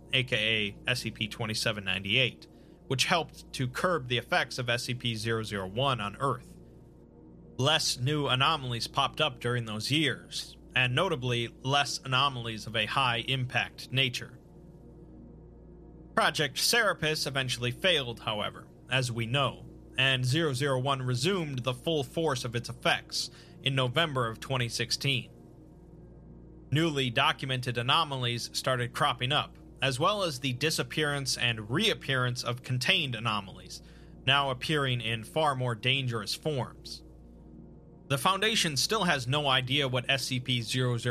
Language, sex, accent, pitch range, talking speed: English, male, American, 120-140 Hz, 115 wpm